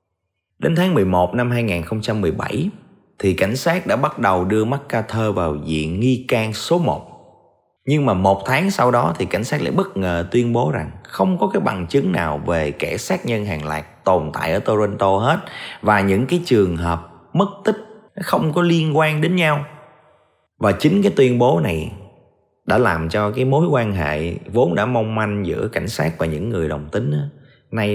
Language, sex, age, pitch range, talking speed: Vietnamese, male, 20-39, 85-140 Hz, 195 wpm